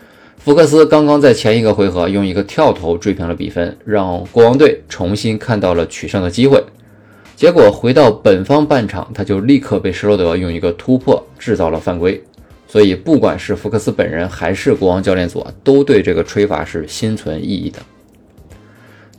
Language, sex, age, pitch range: Chinese, male, 20-39, 90-120 Hz